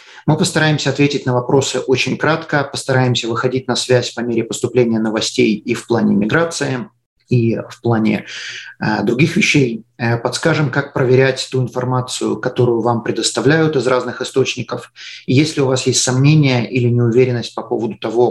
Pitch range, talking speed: 120-145 Hz, 155 wpm